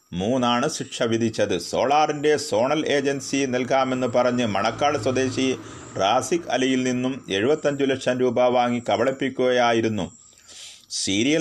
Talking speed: 100 wpm